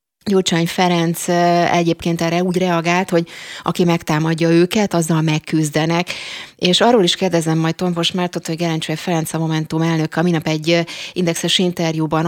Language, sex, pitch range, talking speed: Hungarian, female, 150-175 Hz, 145 wpm